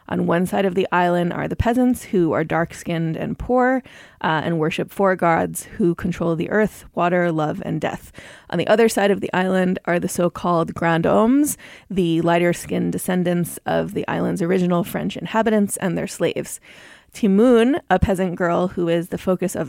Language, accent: English, American